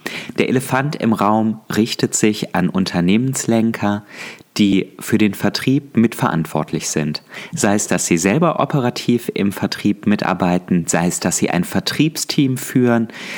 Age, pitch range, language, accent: 30-49, 100-125 Hz, German, German